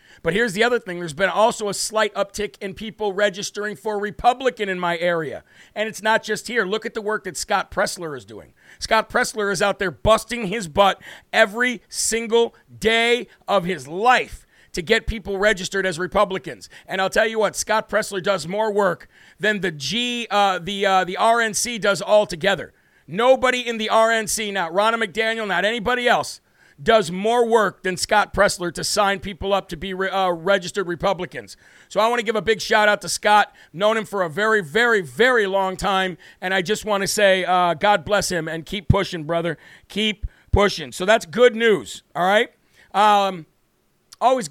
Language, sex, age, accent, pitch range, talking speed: English, male, 50-69, American, 185-220 Hz, 195 wpm